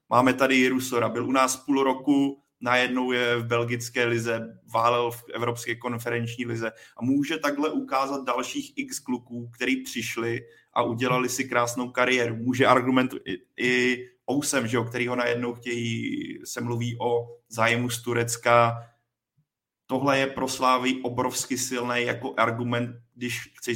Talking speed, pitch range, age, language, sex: 140 wpm, 120-130 Hz, 30-49, Czech, male